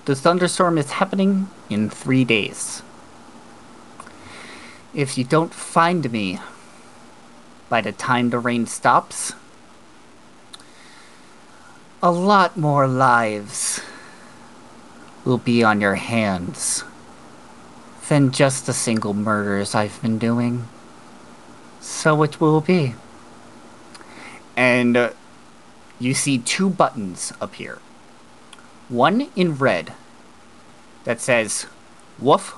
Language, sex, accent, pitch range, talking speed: English, male, American, 115-155 Hz, 95 wpm